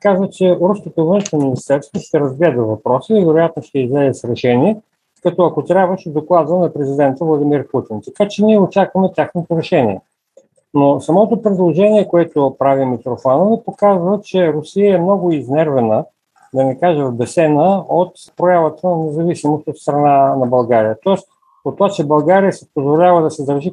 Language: Bulgarian